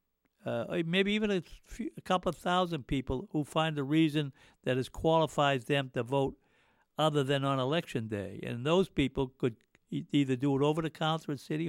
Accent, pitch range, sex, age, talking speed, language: American, 135-170 Hz, male, 60-79, 195 wpm, English